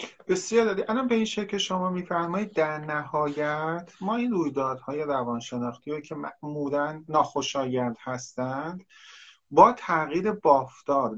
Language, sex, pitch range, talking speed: English, male, 130-170 Hz, 130 wpm